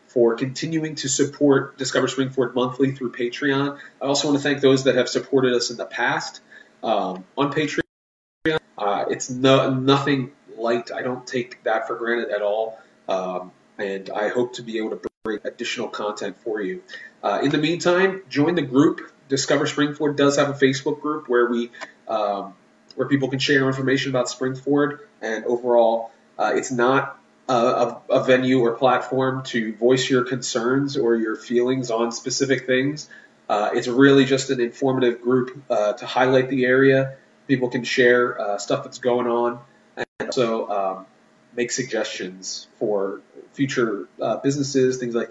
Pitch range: 120-140 Hz